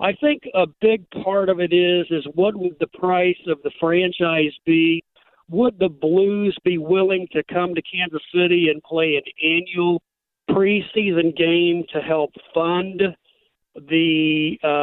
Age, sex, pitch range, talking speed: 60-79, male, 160-190 Hz, 155 wpm